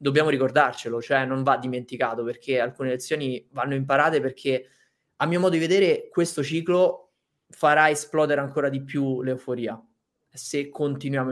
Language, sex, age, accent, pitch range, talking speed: Italian, male, 20-39, native, 130-155 Hz, 145 wpm